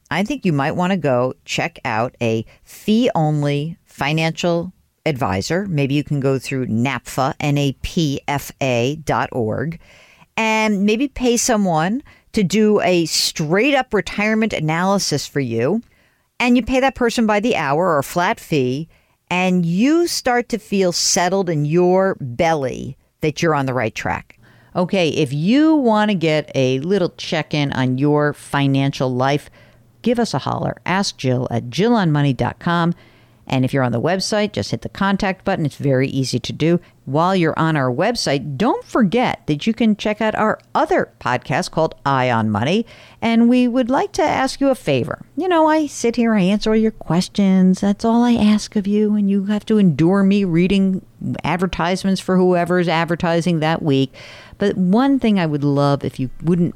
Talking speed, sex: 175 wpm, female